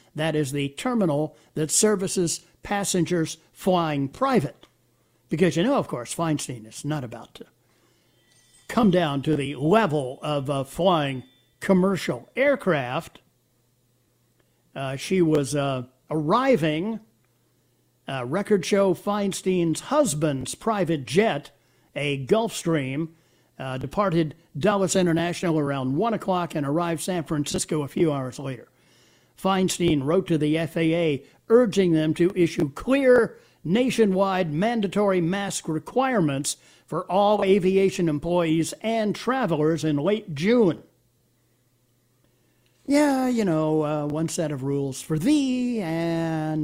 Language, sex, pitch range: English, male, 135-190 Hz